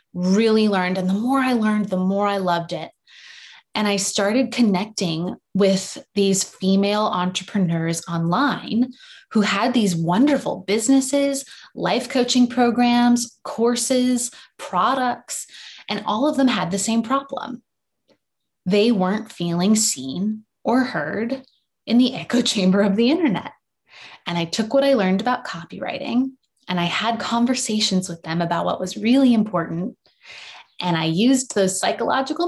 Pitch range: 180-245 Hz